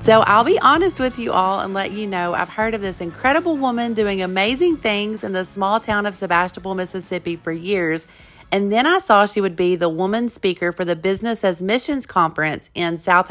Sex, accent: female, American